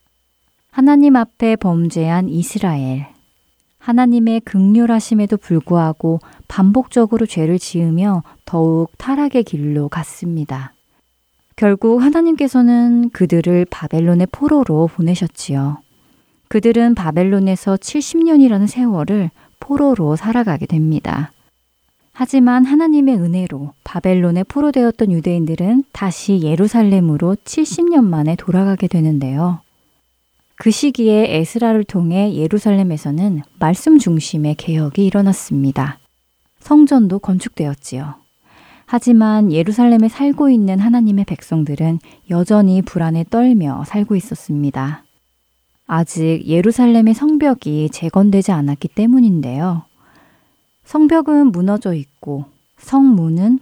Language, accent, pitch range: Korean, native, 155-225 Hz